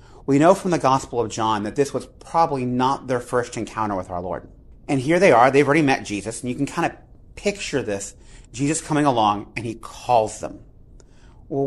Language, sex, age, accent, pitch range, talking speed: Ukrainian, male, 30-49, American, 115-145 Hz, 210 wpm